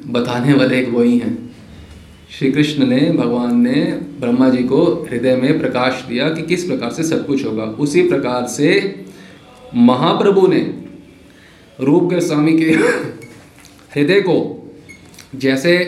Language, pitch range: Hindi, 140-210 Hz